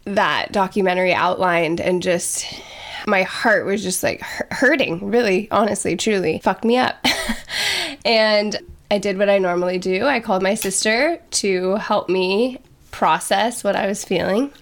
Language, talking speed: English, 150 wpm